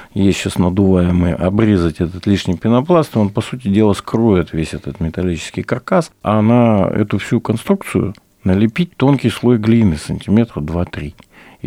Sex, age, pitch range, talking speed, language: male, 50-69, 85-115 Hz, 140 wpm, Russian